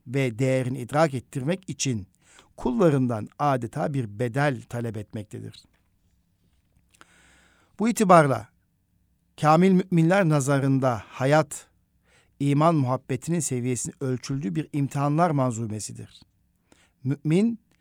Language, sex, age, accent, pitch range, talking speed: Turkish, male, 60-79, native, 120-145 Hz, 85 wpm